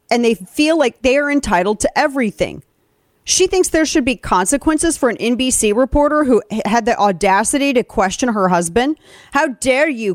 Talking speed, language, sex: 175 wpm, English, female